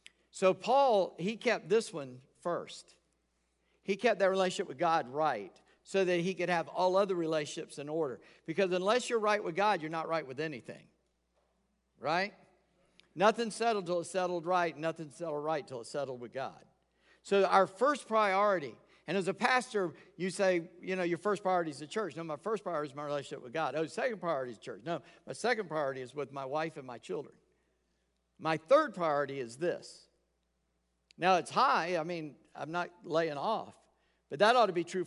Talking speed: 195 wpm